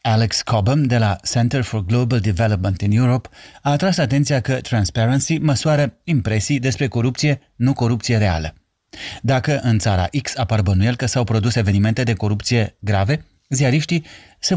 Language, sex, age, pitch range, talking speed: Romanian, male, 30-49, 100-135 Hz, 150 wpm